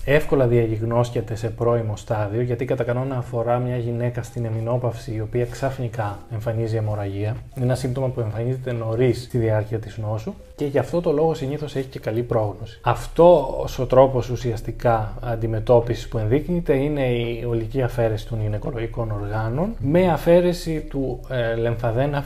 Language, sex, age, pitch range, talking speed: Greek, male, 20-39, 115-135 Hz, 150 wpm